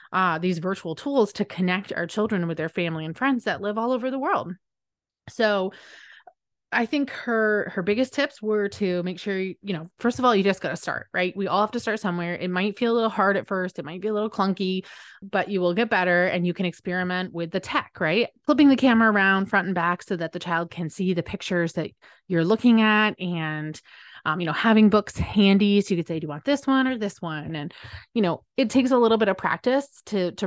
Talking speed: 245 wpm